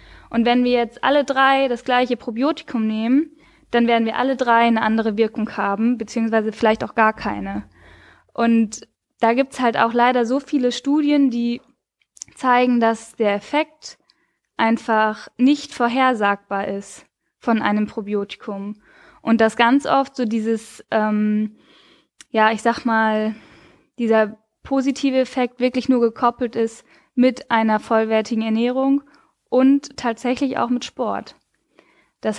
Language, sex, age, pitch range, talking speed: German, female, 10-29, 220-255 Hz, 135 wpm